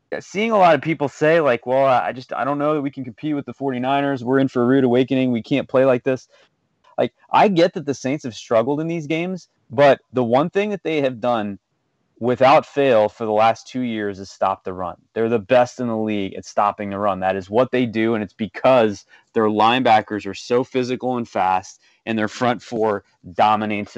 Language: English